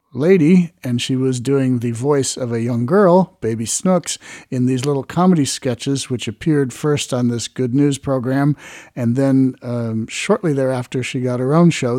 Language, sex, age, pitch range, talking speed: English, male, 50-69, 125-155 Hz, 180 wpm